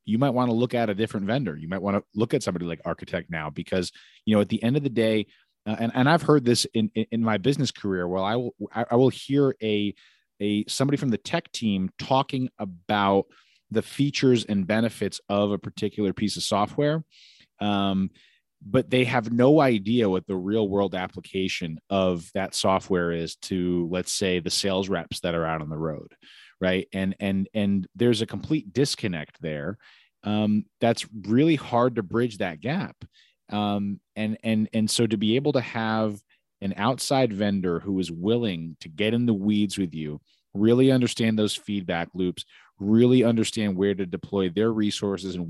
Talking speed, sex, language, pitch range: 190 wpm, male, English, 95-120 Hz